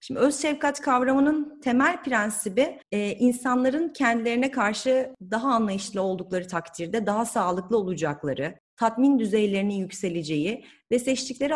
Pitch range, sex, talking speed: 200-265 Hz, female, 115 wpm